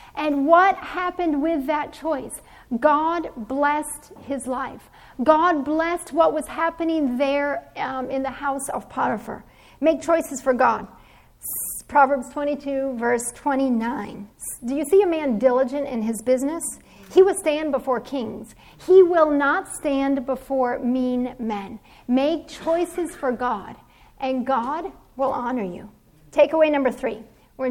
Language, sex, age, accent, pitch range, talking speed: English, female, 40-59, American, 255-310 Hz, 140 wpm